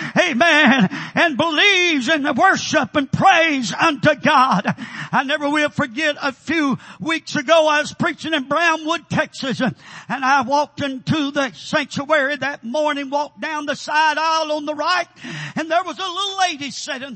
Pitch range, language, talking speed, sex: 275-335 Hz, English, 165 wpm, male